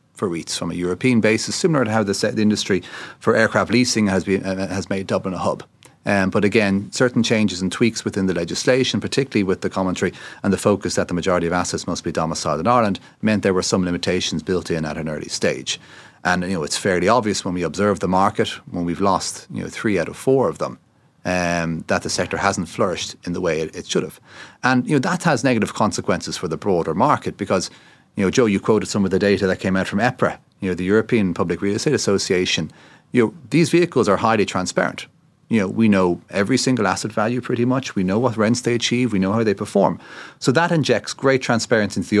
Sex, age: male, 30-49